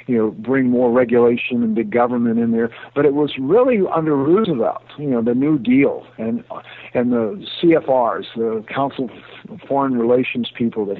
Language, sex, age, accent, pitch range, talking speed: English, male, 60-79, American, 120-150 Hz, 175 wpm